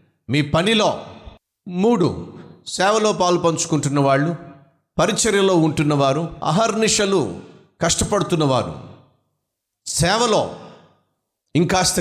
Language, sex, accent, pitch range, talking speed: Telugu, male, native, 145-190 Hz, 65 wpm